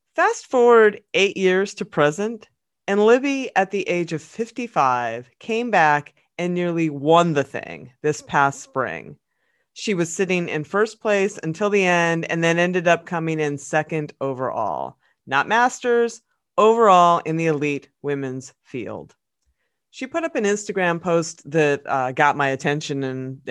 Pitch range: 140-195 Hz